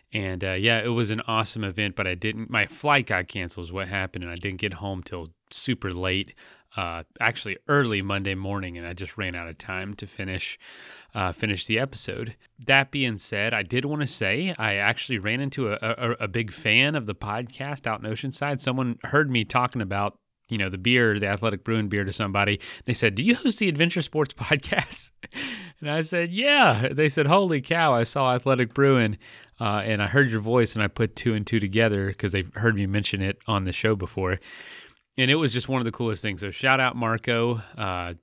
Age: 30-49